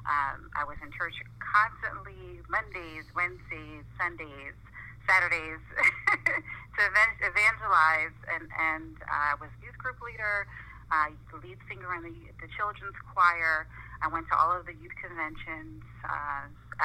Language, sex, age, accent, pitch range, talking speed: English, female, 40-59, American, 120-170 Hz, 130 wpm